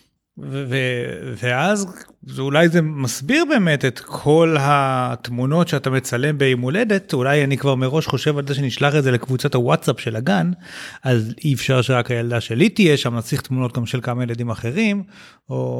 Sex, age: male, 30-49